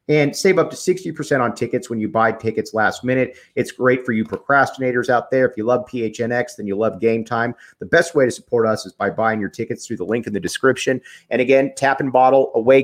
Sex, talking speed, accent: male, 245 wpm, American